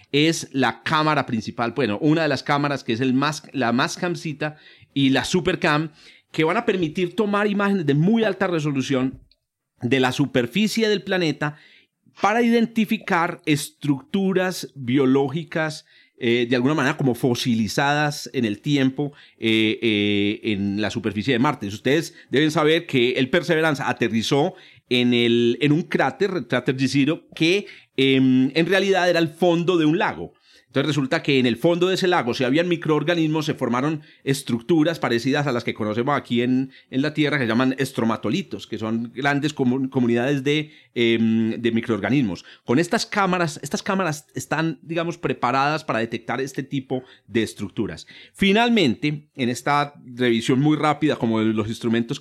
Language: Spanish